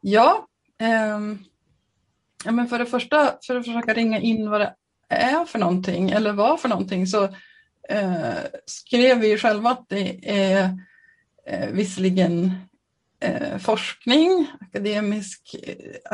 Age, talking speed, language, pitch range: 30-49, 130 wpm, Swedish, 185-240 Hz